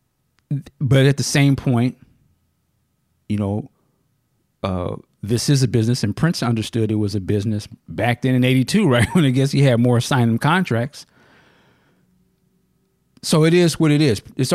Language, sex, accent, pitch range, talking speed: English, male, American, 110-135 Hz, 160 wpm